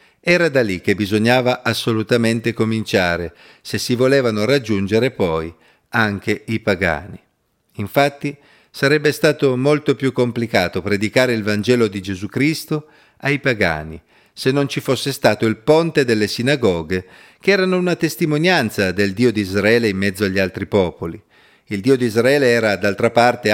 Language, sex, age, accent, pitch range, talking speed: Italian, male, 40-59, native, 105-145 Hz, 150 wpm